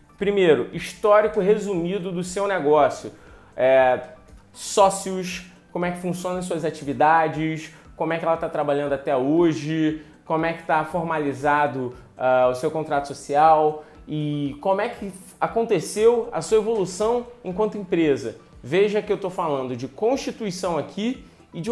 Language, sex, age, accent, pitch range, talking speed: Portuguese, male, 20-39, Brazilian, 145-195 Hz, 140 wpm